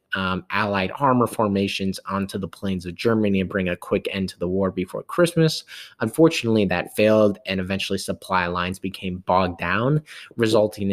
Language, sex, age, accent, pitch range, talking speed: English, male, 20-39, American, 95-110 Hz, 165 wpm